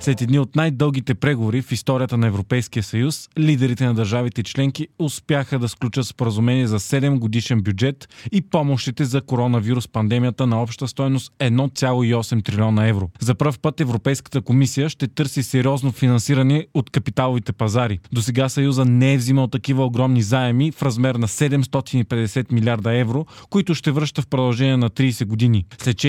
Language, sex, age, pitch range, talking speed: Bulgarian, male, 20-39, 120-140 Hz, 155 wpm